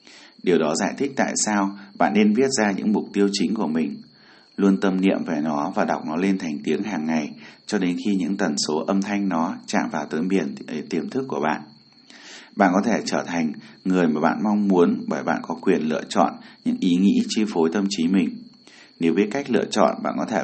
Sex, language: male, Vietnamese